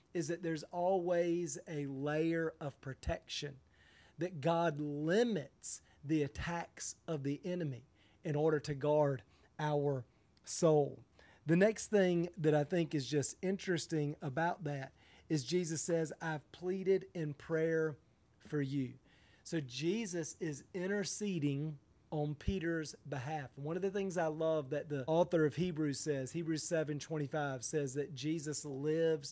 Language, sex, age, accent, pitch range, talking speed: English, male, 40-59, American, 145-170 Hz, 140 wpm